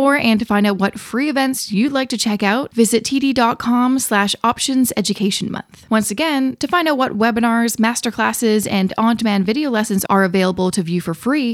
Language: English